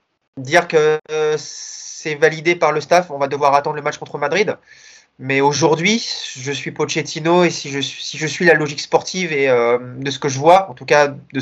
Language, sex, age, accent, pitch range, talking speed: French, male, 20-39, French, 140-165 Hz, 210 wpm